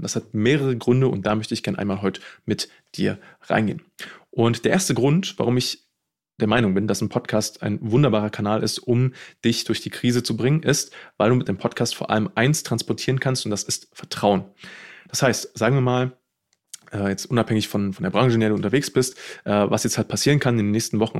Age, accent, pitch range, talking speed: 20-39, German, 105-125 Hz, 220 wpm